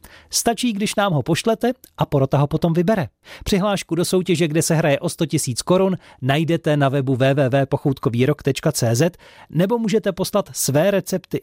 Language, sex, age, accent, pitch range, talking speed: Czech, male, 40-59, native, 135-190 Hz, 150 wpm